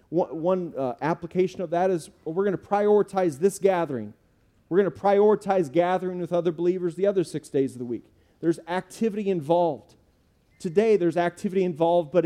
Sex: male